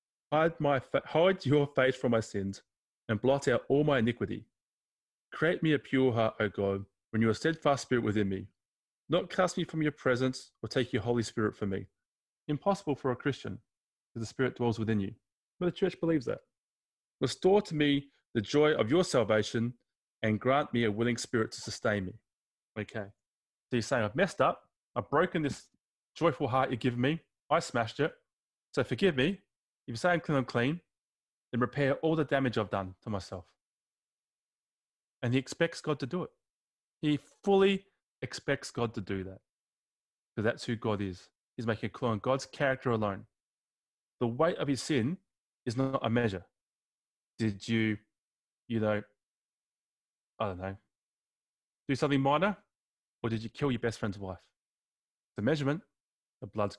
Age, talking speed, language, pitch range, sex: 30-49, 180 wpm, English, 105-145 Hz, male